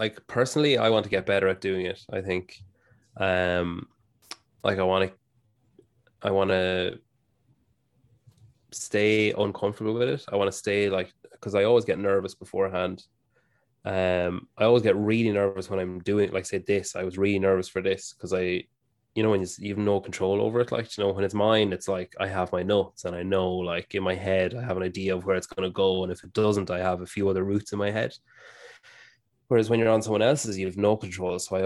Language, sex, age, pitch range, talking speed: English, male, 20-39, 95-110 Hz, 225 wpm